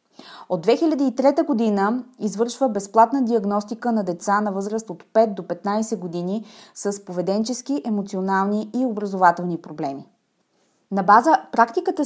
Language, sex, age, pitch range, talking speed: Bulgarian, female, 20-39, 190-250 Hz, 120 wpm